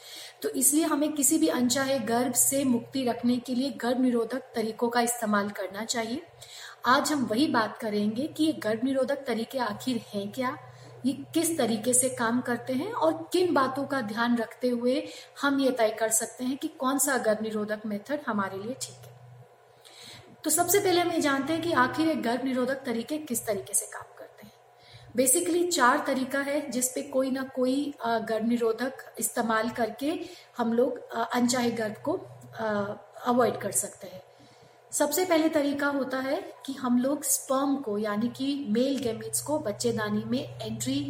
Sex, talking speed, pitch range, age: female, 170 wpm, 225-275 Hz, 30-49